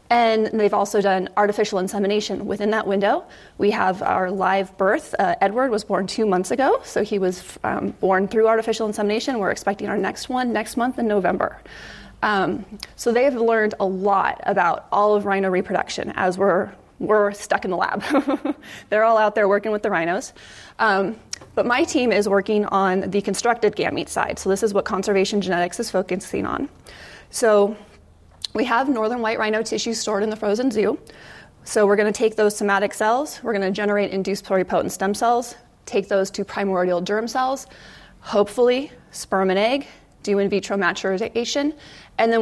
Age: 20-39